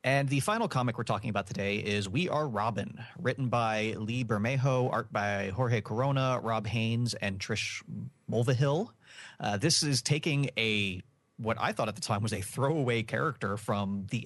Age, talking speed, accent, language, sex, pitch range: 30-49, 175 wpm, American, English, male, 100-130 Hz